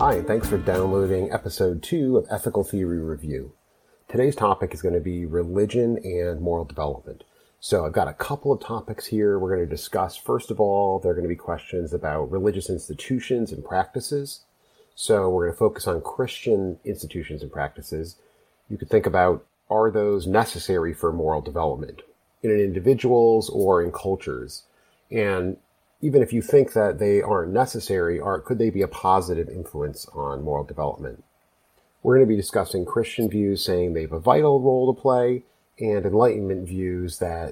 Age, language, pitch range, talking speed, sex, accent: 40-59, English, 85-110 Hz, 175 wpm, male, American